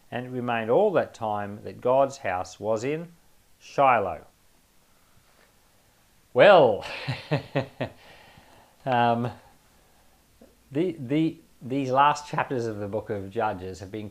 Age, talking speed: 40-59, 110 wpm